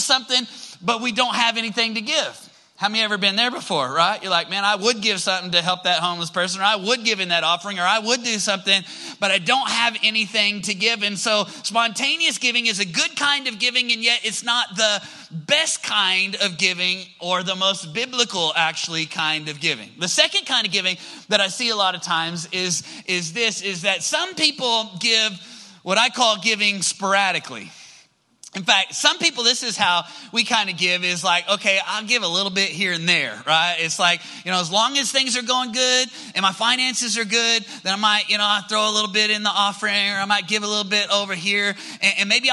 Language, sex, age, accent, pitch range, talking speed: English, male, 30-49, American, 195-235 Hz, 225 wpm